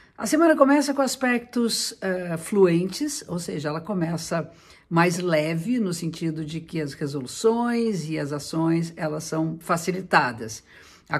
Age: 50-69